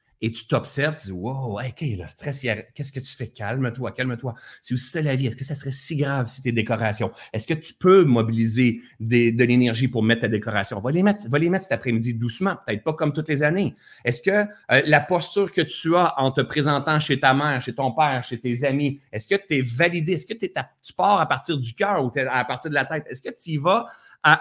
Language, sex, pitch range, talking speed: French, male, 115-165 Hz, 255 wpm